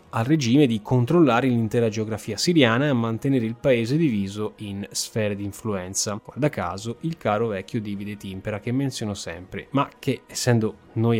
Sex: male